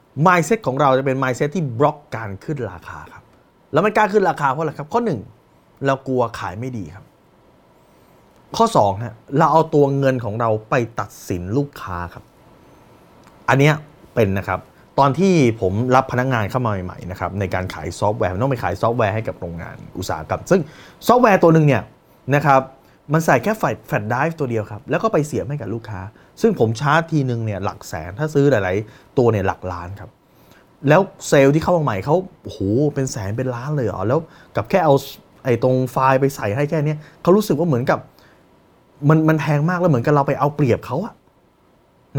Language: Thai